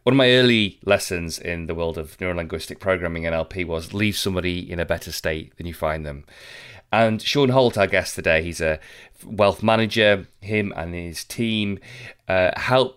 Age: 30-49